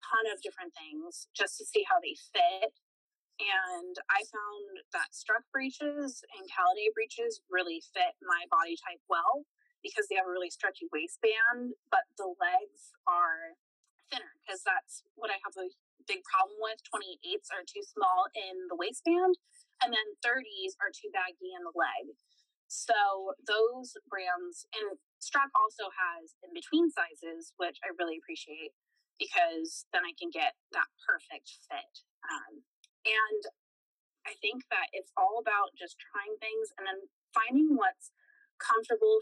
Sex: female